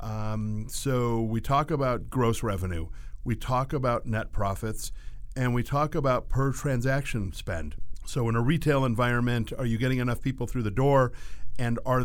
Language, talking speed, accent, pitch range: English, 170 wpm, American, 105-125 Hz